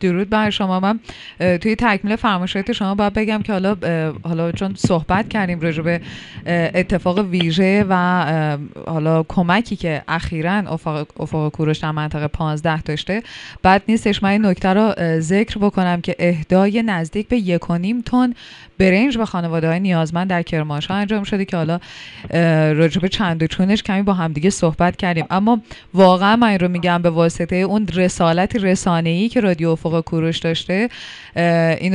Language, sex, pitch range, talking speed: Persian, female, 165-195 Hz, 150 wpm